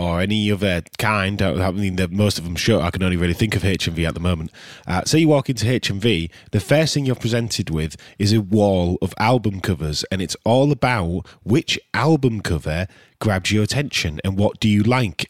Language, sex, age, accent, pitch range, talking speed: English, male, 20-39, British, 95-125 Hz, 210 wpm